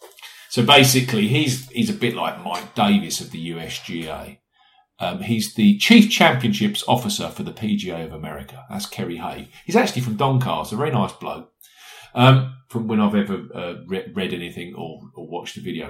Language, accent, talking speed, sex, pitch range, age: English, British, 180 wpm, male, 105-150 Hz, 50-69